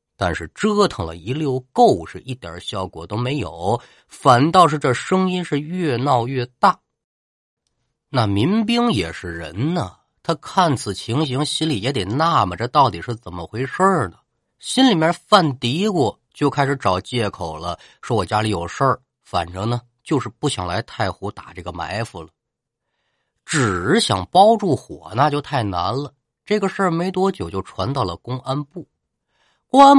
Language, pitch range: Chinese, 105-175 Hz